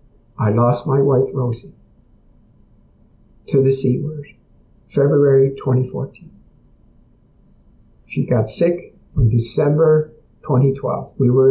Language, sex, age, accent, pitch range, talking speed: English, male, 50-69, American, 110-135 Hz, 100 wpm